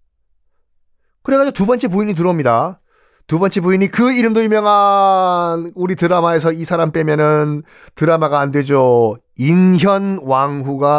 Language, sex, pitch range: Korean, male, 125-195 Hz